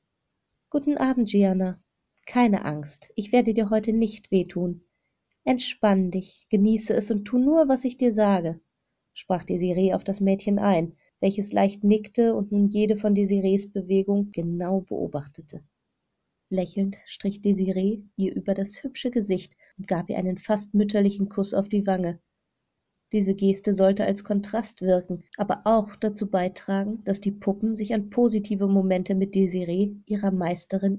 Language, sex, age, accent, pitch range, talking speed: German, female, 30-49, German, 185-205 Hz, 150 wpm